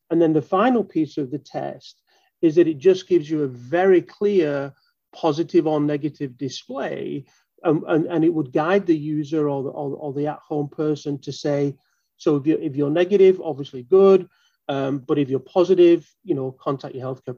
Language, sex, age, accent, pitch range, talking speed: English, male, 30-49, British, 145-175 Hz, 195 wpm